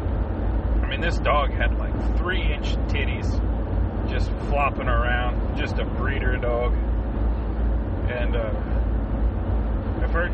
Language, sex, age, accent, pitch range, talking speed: English, male, 30-49, American, 85-105 Hz, 110 wpm